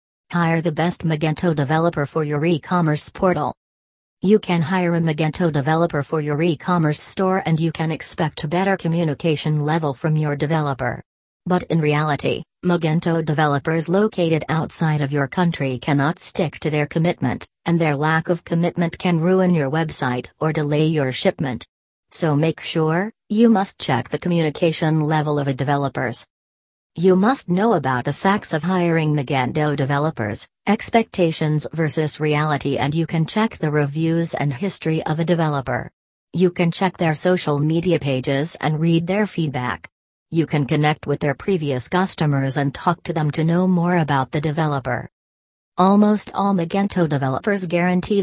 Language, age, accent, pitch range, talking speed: English, 40-59, American, 145-175 Hz, 160 wpm